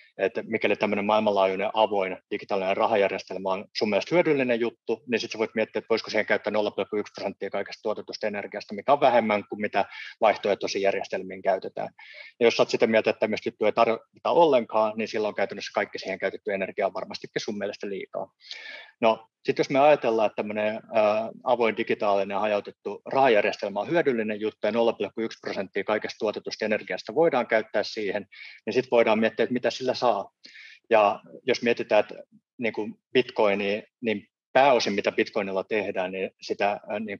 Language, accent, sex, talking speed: Finnish, native, male, 160 wpm